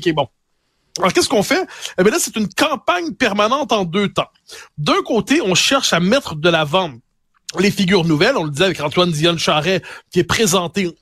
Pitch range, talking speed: 180-240 Hz, 205 wpm